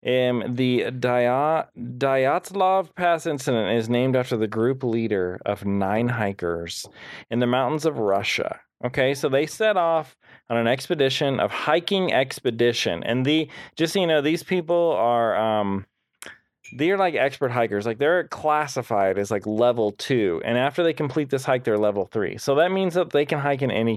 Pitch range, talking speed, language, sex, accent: 120-165 Hz, 175 wpm, English, male, American